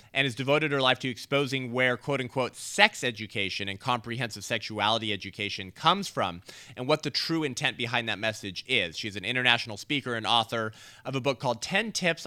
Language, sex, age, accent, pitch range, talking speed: English, male, 30-49, American, 110-150 Hz, 185 wpm